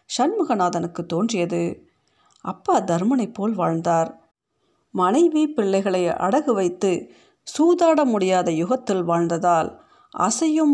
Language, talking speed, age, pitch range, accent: Tamil, 85 wpm, 50-69, 175-250 Hz, native